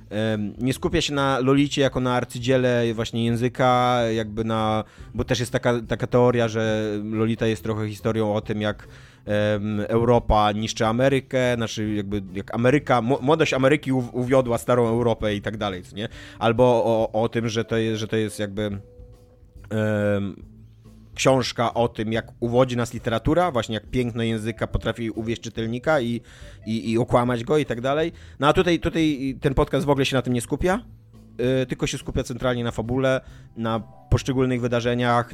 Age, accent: 30-49, native